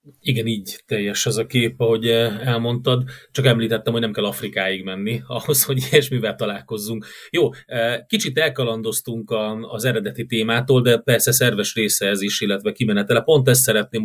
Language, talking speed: Hungarian, 155 wpm